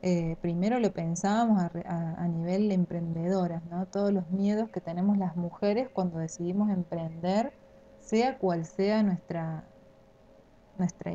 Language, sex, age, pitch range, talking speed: Spanish, female, 20-39, 170-205 Hz, 140 wpm